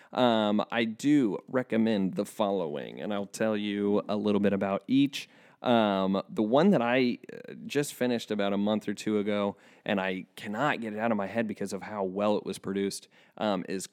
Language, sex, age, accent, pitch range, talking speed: English, male, 30-49, American, 100-125 Hz, 200 wpm